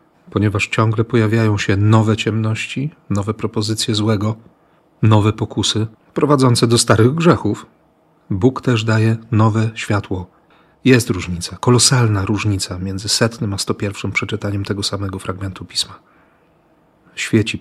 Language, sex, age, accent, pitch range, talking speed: Polish, male, 40-59, native, 105-130 Hz, 120 wpm